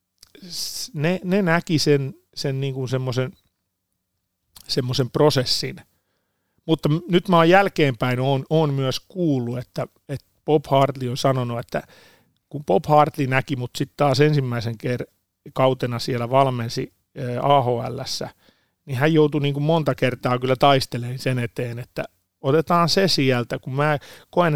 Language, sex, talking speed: Finnish, male, 135 wpm